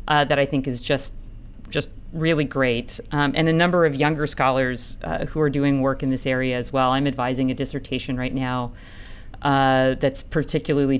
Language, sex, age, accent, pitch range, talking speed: English, female, 40-59, American, 130-150 Hz, 190 wpm